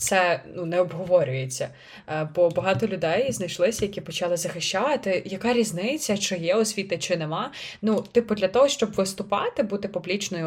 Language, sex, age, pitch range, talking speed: Ukrainian, female, 20-39, 160-205 Hz, 155 wpm